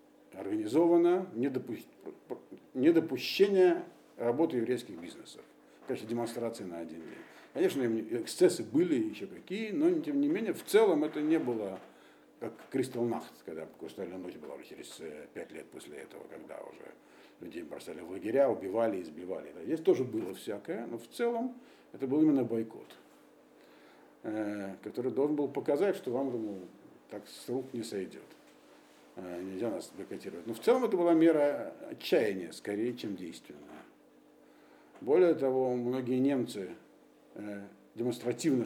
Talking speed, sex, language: 130 wpm, male, Russian